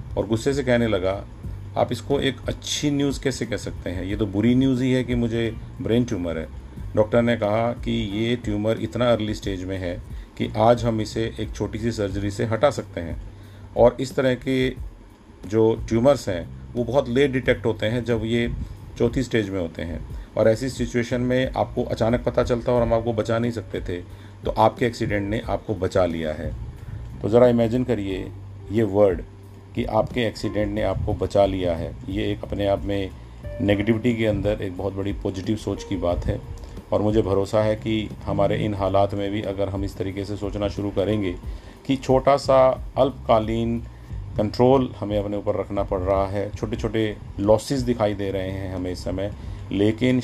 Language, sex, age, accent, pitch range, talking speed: Hindi, male, 40-59, native, 100-120 Hz, 195 wpm